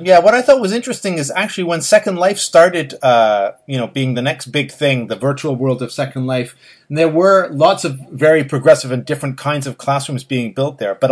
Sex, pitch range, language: male, 125-150 Hz, English